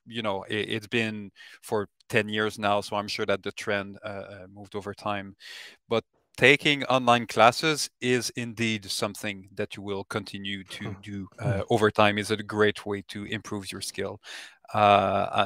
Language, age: English, 30-49